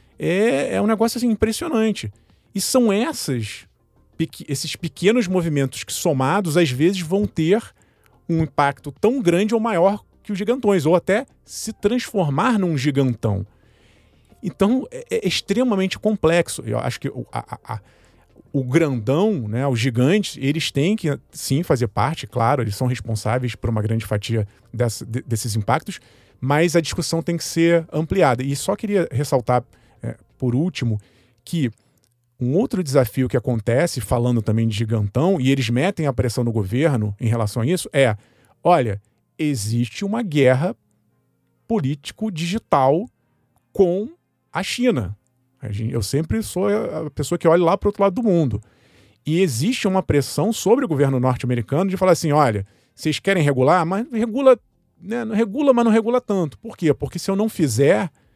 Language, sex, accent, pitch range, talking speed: Portuguese, male, Brazilian, 125-195 Hz, 160 wpm